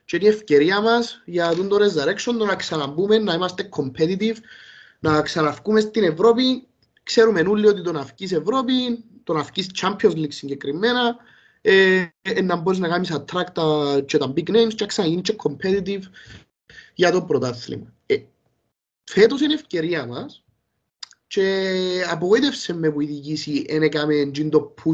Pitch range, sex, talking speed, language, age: 150-210 Hz, male, 120 wpm, Greek, 20-39